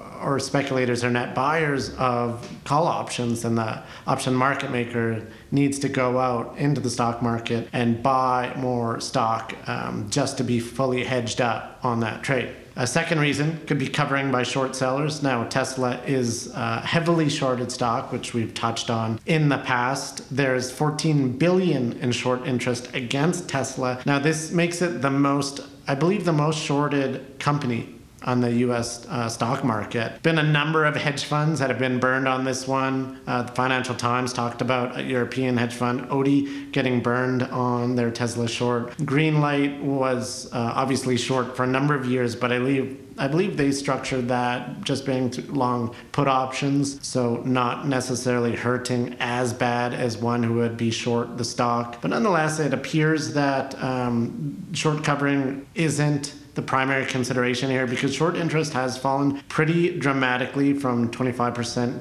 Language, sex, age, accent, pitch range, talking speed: English, male, 40-59, American, 120-140 Hz, 165 wpm